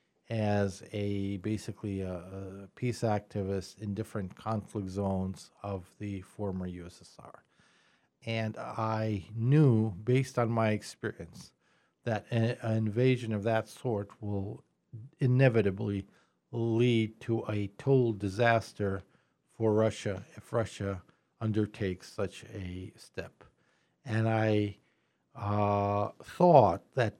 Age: 50-69